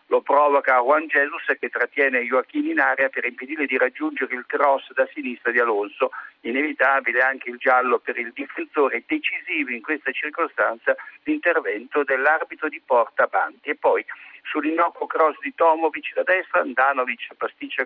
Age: 50-69